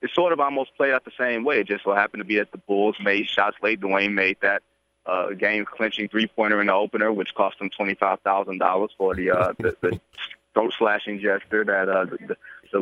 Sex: male